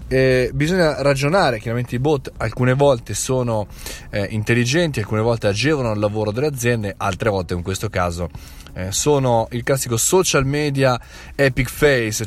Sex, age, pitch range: male, 20-39, 100-130 Hz